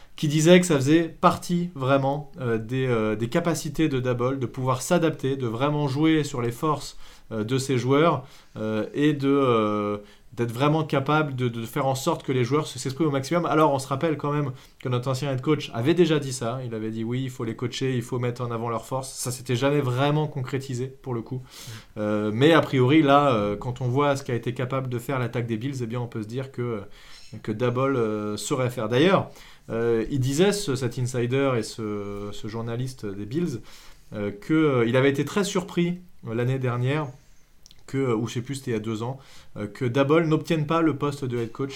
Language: French